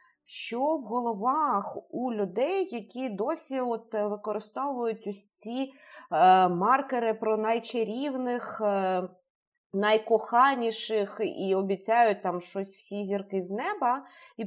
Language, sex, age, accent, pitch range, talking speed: Ukrainian, female, 30-49, native, 200-275 Hz, 100 wpm